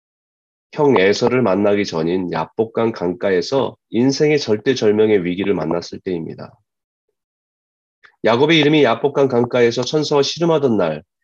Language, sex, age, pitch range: Korean, male, 30-49, 95-140 Hz